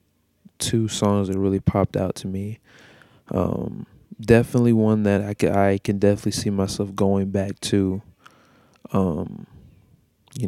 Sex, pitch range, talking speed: male, 95-110 Hz, 135 wpm